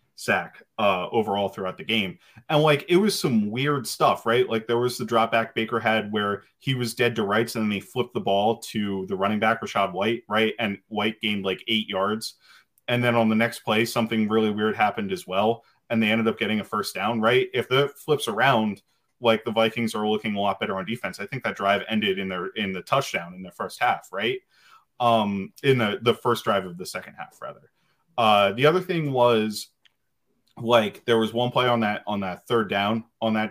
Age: 20-39